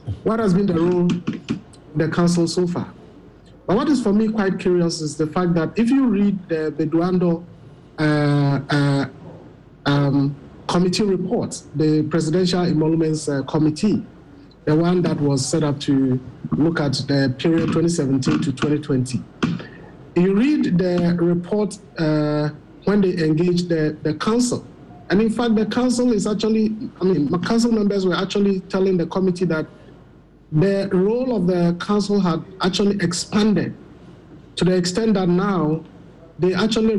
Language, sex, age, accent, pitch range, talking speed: English, male, 50-69, Nigerian, 155-195 Hz, 155 wpm